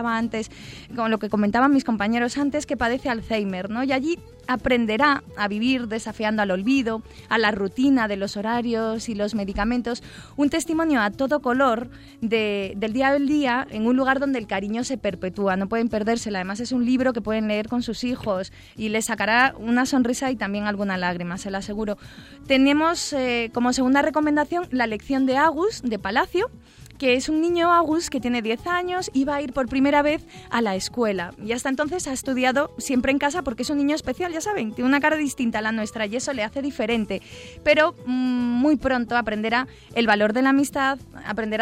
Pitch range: 215-280 Hz